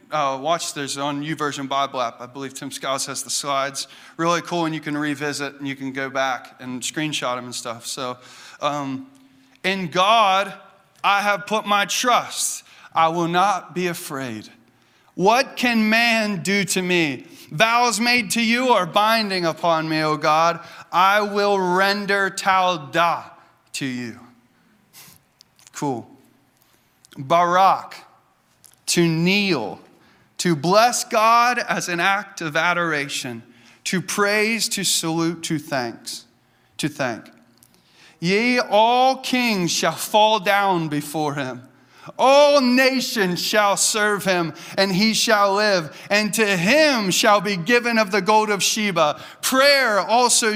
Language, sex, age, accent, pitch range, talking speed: English, male, 30-49, American, 150-210 Hz, 140 wpm